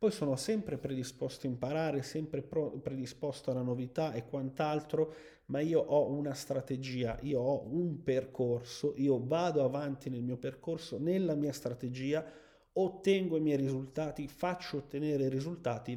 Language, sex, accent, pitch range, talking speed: Italian, male, native, 130-170 Hz, 145 wpm